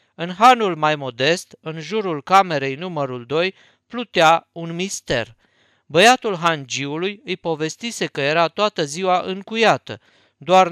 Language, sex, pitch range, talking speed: Romanian, male, 140-195 Hz, 125 wpm